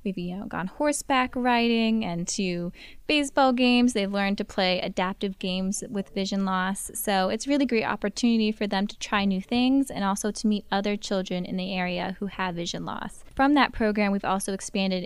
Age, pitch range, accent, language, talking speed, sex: 20-39, 185-225 Hz, American, English, 195 wpm, female